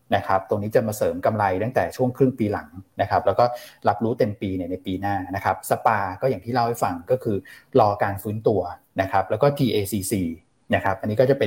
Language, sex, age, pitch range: Thai, male, 20-39, 100-125 Hz